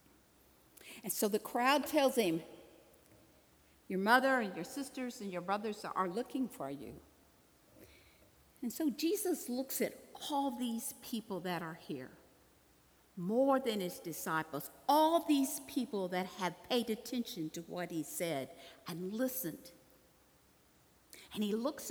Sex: female